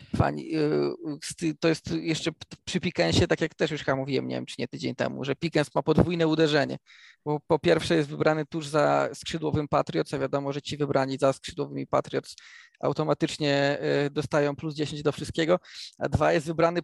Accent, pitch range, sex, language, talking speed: native, 135-165 Hz, male, Polish, 175 wpm